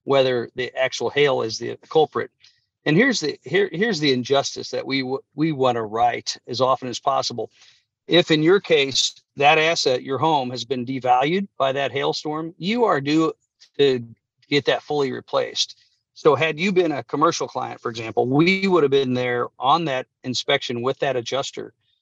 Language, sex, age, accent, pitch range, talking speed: English, male, 50-69, American, 125-160 Hz, 185 wpm